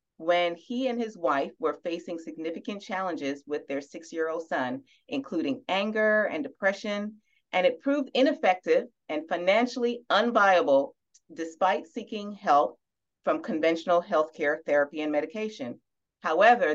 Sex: female